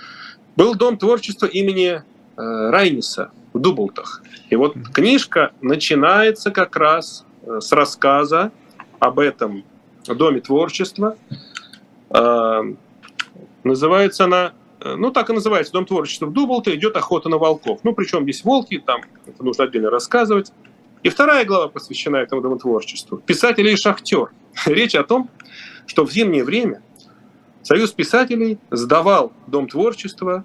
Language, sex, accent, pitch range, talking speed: Russian, male, native, 155-240 Hz, 125 wpm